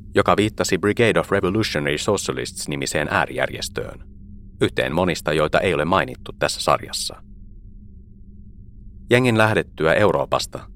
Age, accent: 30-49, native